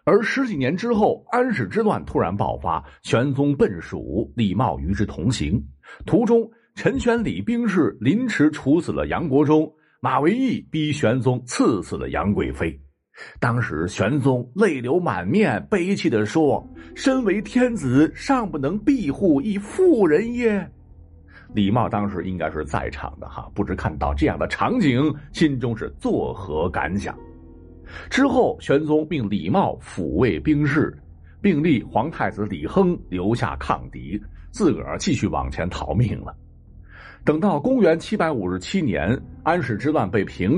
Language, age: Chinese, 60-79